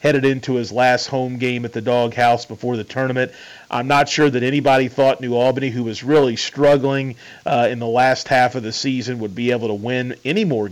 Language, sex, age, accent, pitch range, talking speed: English, male, 40-59, American, 120-140 Hz, 220 wpm